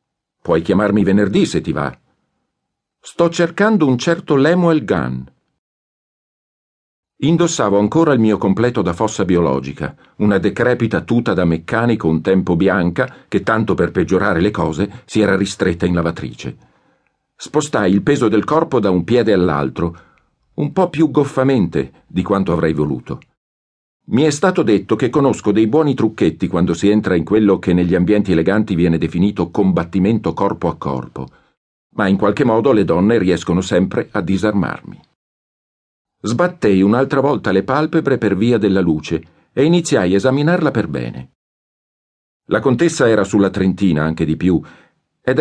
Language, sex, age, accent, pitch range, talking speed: Italian, male, 50-69, native, 85-125 Hz, 150 wpm